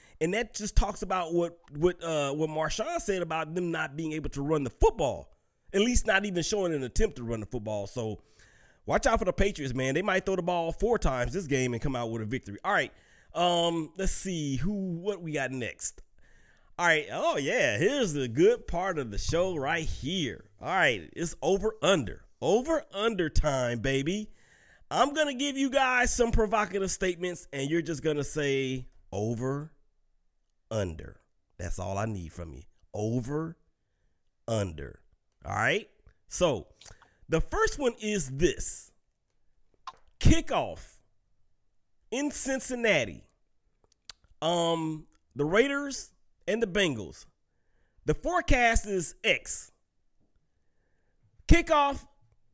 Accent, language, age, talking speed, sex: American, English, 30-49, 150 wpm, male